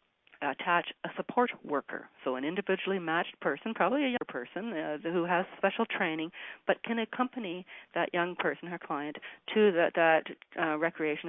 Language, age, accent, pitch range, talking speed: English, 40-59, American, 160-195 Hz, 170 wpm